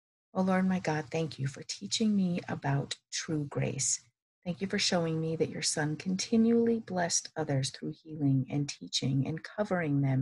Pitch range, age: 140-180 Hz, 50-69